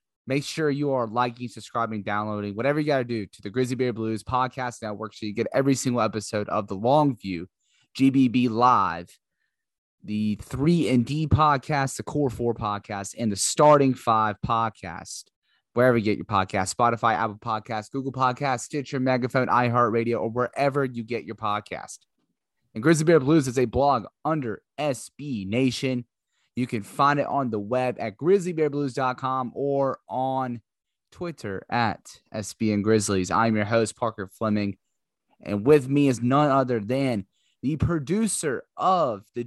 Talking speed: 155 wpm